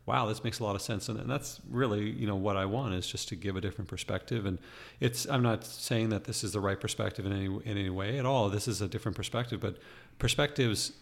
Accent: American